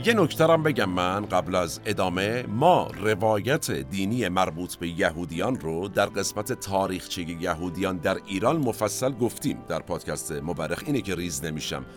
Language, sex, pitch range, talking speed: Persian, male, 90-120 Hz, 140 wpm